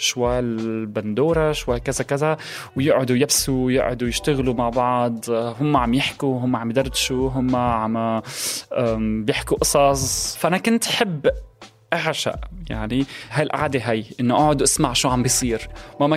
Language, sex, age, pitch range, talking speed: Arabic, male, 20-39, 115-145 Hz, 130 wpm